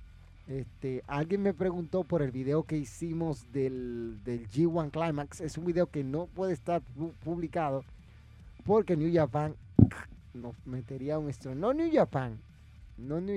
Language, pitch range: Spanish, 130-185 Hz